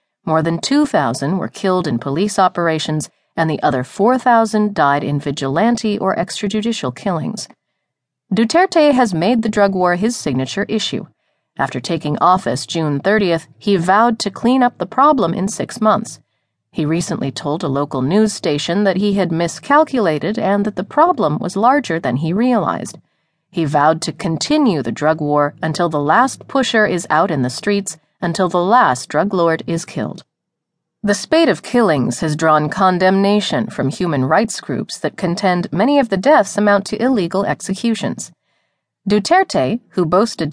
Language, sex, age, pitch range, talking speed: English, female, 30-49, 155-215 Hz, 160 wpm